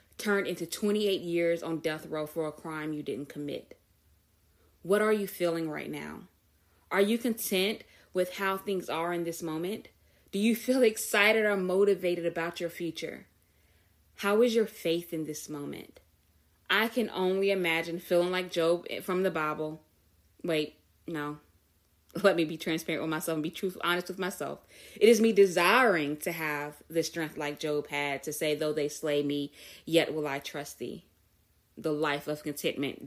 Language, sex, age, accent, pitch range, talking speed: English, female, 20-39, American, 145-185 Hz, 170 wpm